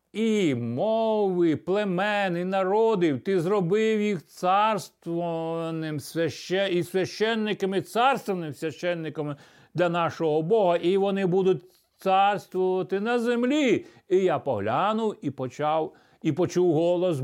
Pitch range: 160-200 Hz